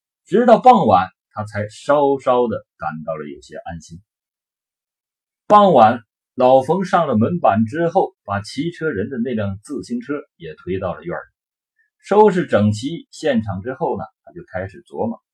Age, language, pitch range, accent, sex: 50-69, Chinese, 105-175 Hz, native, male